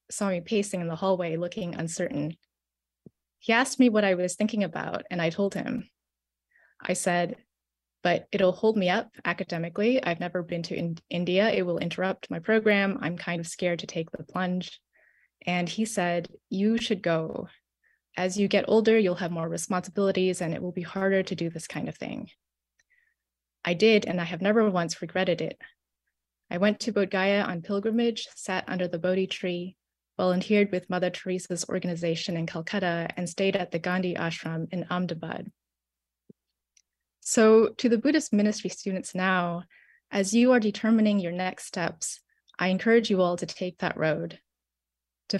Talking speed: 170 wpm